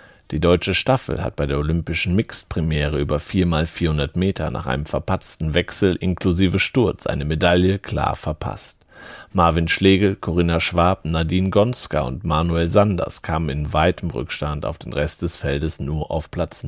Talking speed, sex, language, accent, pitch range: 150 wpm, male, German, German, 80-95 Hz